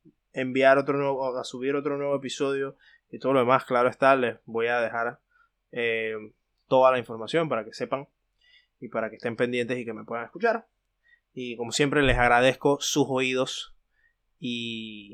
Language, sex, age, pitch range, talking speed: Spanish, male, 20-39, 120-145 Hz, 170 wpm